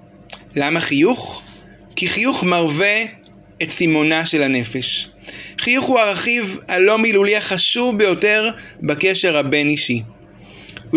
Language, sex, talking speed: Hebrew, male, 110 wpm